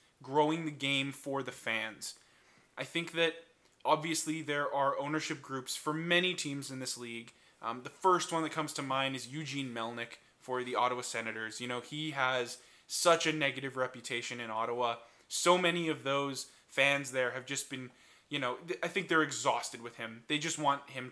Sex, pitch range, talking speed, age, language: male, 125-155 Hz, 190 wpm, 20-39, English